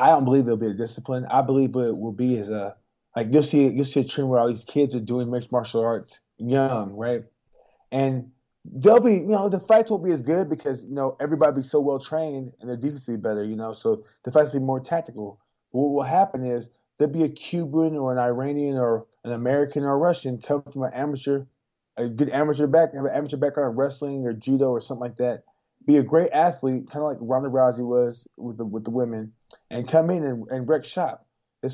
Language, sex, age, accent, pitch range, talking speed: English, male, 20-39, American, 125-150 Hz, 235 wpm